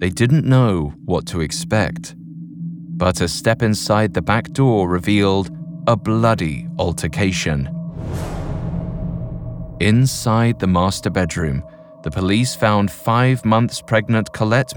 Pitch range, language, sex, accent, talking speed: 95-140 Hz, English, male, British, 115 wpm